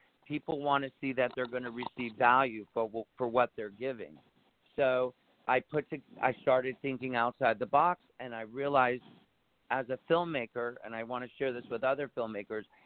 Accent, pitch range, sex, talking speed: American, 120-145 Hz, male, 185 wpm